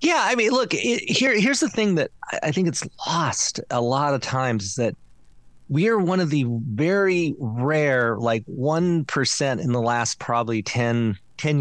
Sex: male